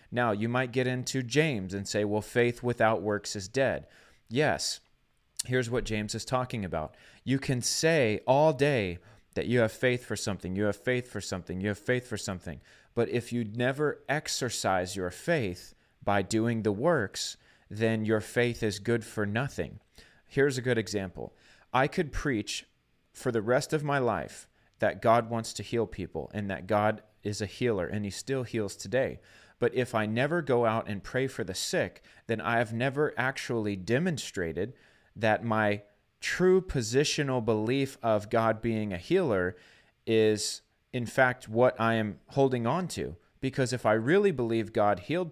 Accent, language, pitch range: American, English, 105-130 Hz